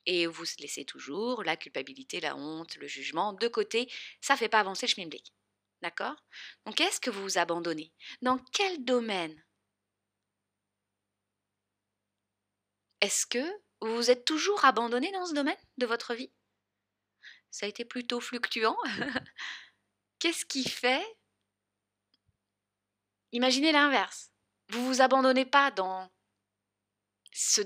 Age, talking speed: 20-39, 130 wpm